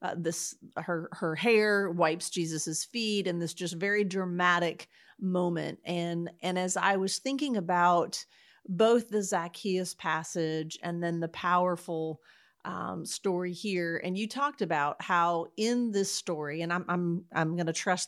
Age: 40-59